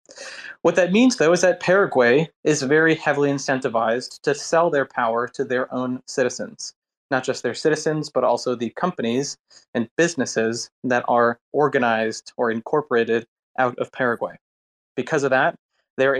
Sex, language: male, English